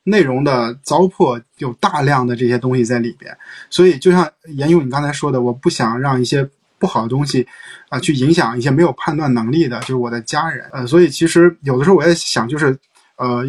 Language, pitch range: Chinese, 125-170 Hz